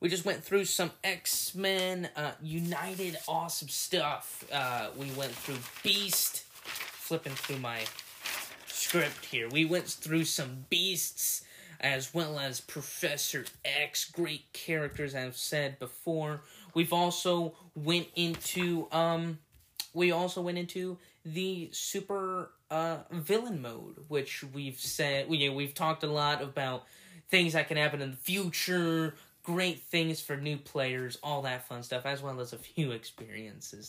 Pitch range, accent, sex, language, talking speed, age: 140-175 Hz, American, male, English, 145 wpm, 10-29